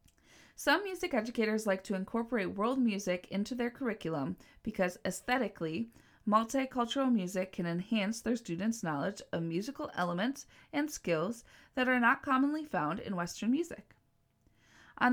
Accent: American